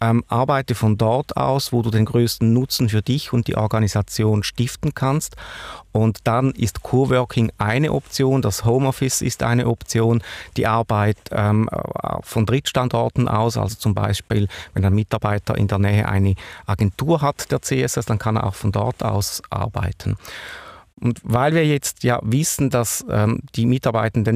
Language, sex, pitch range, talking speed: French, male, 105-125 Hz, 160 wpm